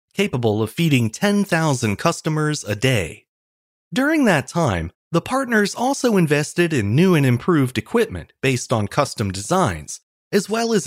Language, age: English, 30-49